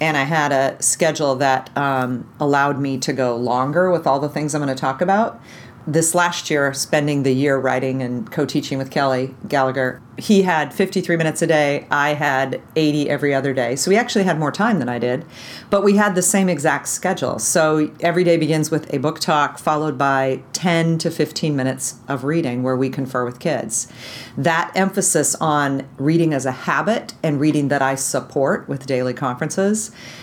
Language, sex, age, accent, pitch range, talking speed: English, female, 40-59, American, 135-165 Hz, 195 wpm